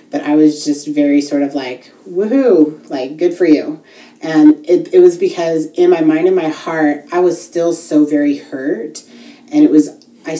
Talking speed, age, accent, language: 195 wpm, 30-49, American, English